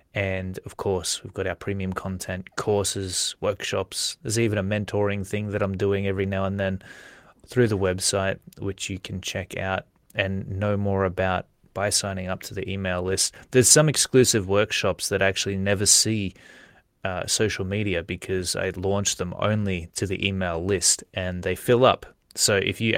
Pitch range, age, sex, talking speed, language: 95-110 Hz, 20-39, male, 180 wpm, English